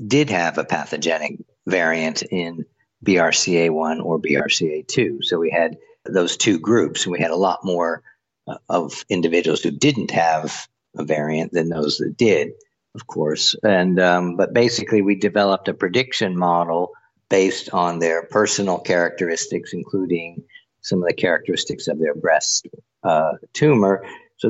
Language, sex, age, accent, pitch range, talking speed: English, male, 50-69, American, 85-110 Hz, 140 wpm